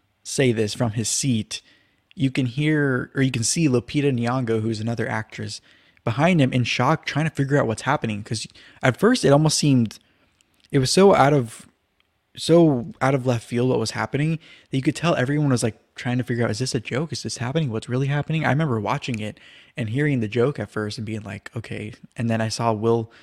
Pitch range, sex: 110-140 Hz, male